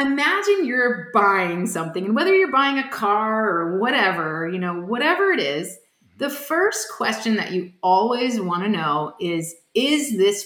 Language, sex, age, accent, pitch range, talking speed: English, female, 30-49, American, 200-315 Hz, 165 wpm